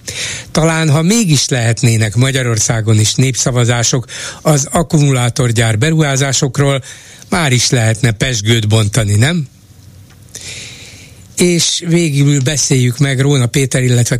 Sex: male